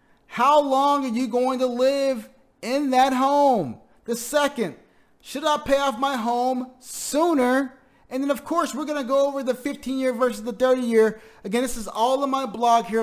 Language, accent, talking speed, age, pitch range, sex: English, American, 190 wpm, 30-49, 175-255 Hz, male